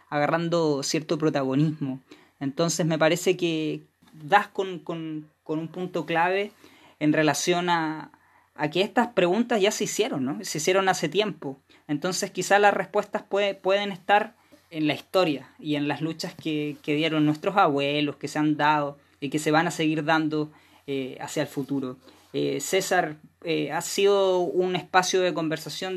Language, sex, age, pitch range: Chinese, female, 20-39, 150-180 Hz